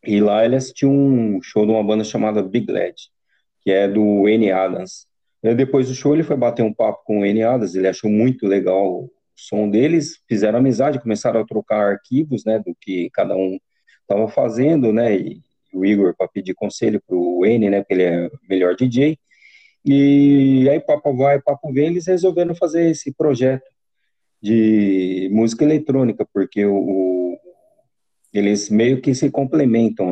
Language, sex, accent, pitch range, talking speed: Portuguese, male, Brazilian, 95-135 Hz, 175 wpm